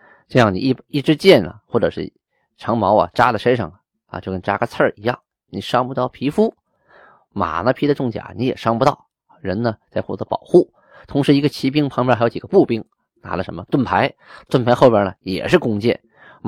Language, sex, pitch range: Chinese, male, 100-135 Hz